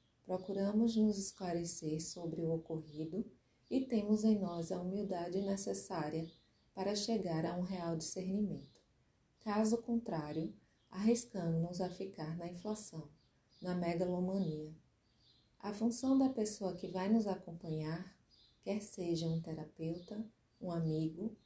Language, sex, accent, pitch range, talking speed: Portuguese, female, Brazilian, 170-215 Hz, 115 wpm